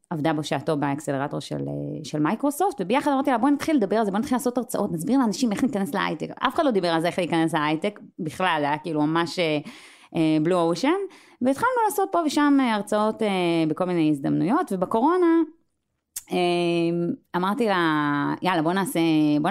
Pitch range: 160-240 Hz